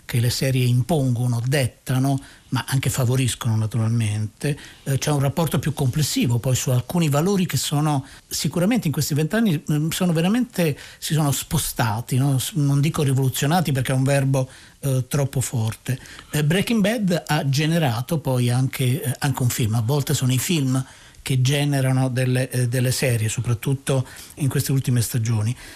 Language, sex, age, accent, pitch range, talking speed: Italian, male, 50-69, native, 130-150 Hz, 150 wpm